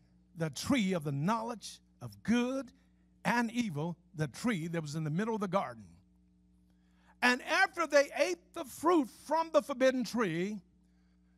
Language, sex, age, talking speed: English, male, 50-69, 155 wpm